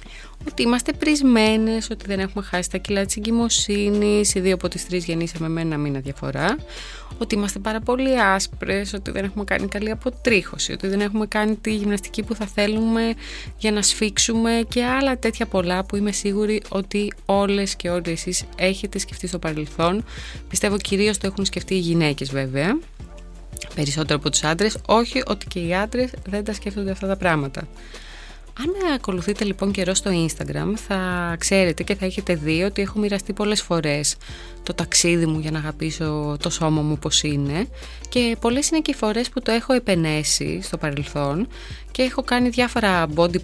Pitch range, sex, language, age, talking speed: 170-225 Hz, female, Greek, 20-39, 180 wpm